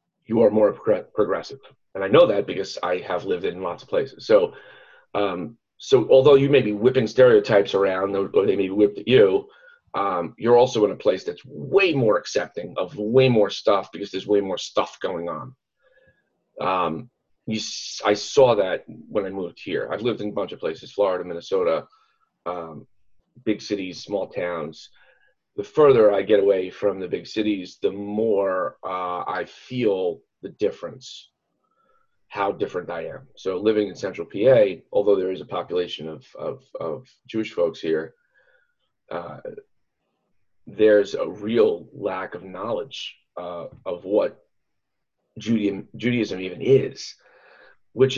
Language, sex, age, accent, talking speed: English, male, 30-49, American, 160 wpm